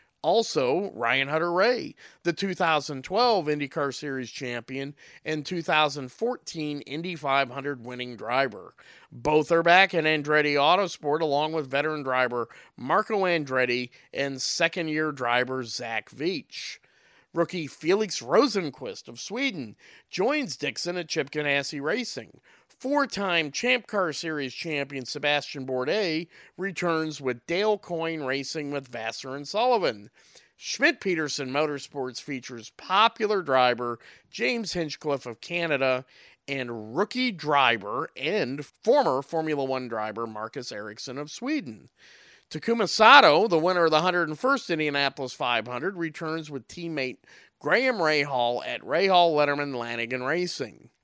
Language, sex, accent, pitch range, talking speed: English, male, American, 130-175 Hz, 115 wpm